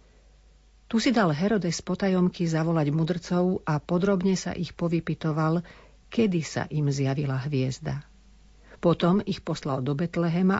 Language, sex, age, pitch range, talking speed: Slovak, female, 50-69, 150-185 Hz, 125 wpm